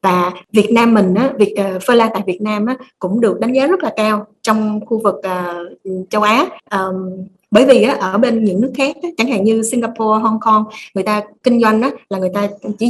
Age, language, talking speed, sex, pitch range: 20-39, Vietnamese, 200 wpm, female, 200-245 Hz